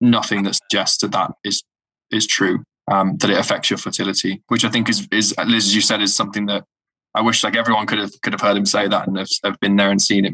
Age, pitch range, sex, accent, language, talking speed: 20-39, 100-110 Hz, male, British, English, 265 wpm